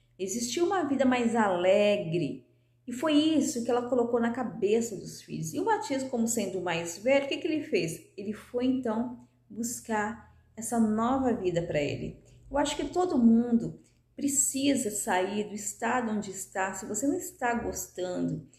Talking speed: 170 wpm